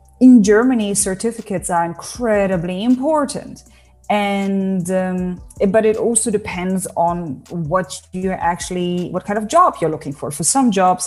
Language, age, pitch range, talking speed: English, 30-49, 165-220 Hz, 140 wpm